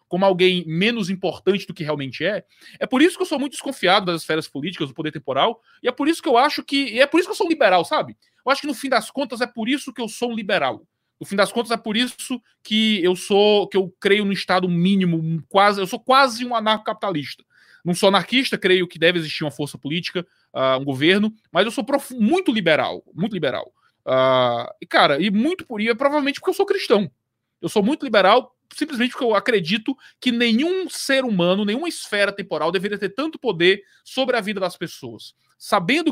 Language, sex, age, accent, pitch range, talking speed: Portuguese, male, 20-39, Brazilian, 170-240 Hz, 220 wpm